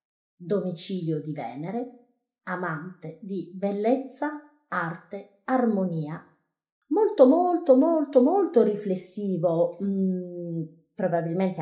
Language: Italian